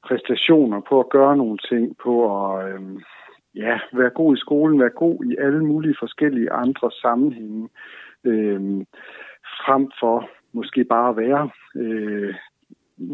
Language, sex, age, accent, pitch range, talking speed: Danish, male, 60-79, native, 110-140 Hz, 135 wpm